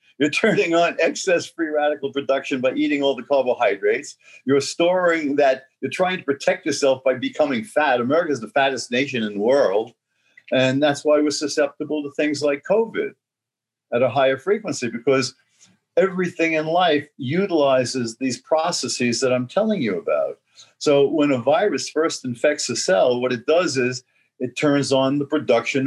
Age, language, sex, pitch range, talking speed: 50-69, English, male, 125-160 Hz, 170 wpm